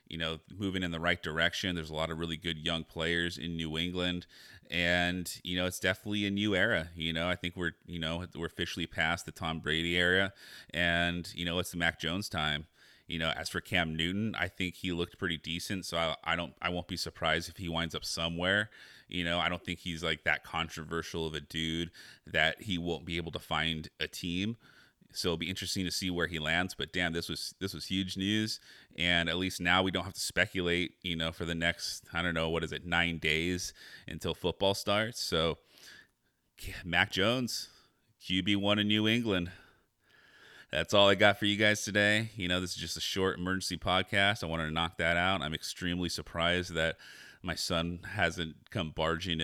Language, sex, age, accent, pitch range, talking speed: English, male, 30-49, American, 80-95 Hz, 210 wpm